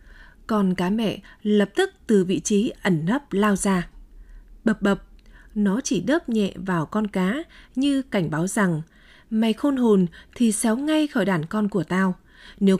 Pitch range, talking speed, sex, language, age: 190-240 Hz, 175 wpm, female, Vietnamese, 20-39